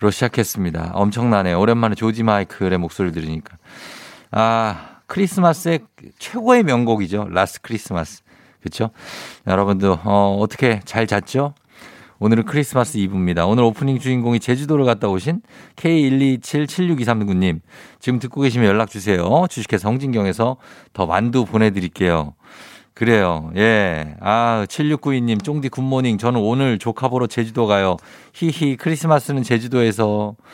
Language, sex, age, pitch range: Korean, male, 50-69, 100-140 Hz